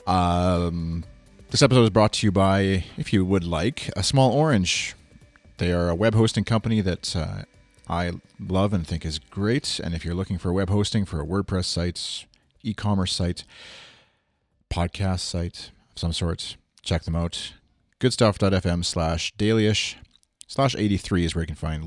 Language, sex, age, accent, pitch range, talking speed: English, male, 30-49, American, 85-105 Hz, 165 wpm